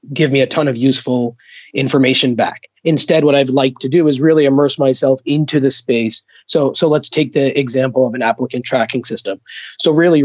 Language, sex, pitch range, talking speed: English, male, 130-150 Hz, 200 wpm